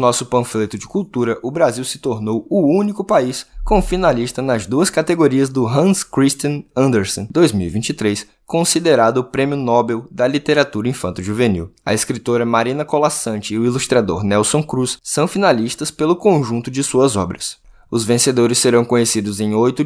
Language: Portuguese